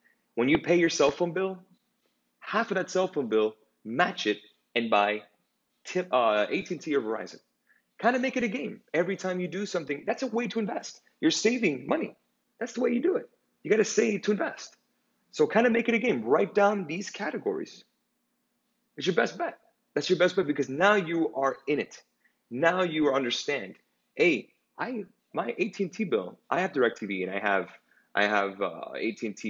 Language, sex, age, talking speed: English, male, 30-49, 195 wpm